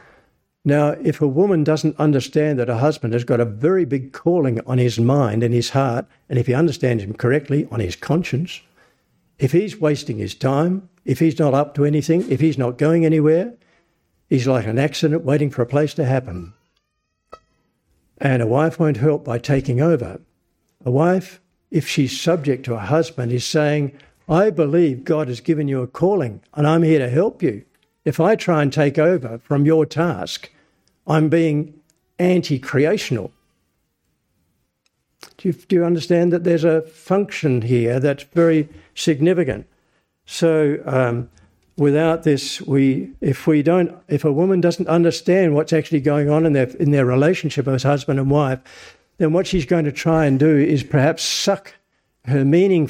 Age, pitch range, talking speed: 60-79, 130-165 Hz, 170 wpm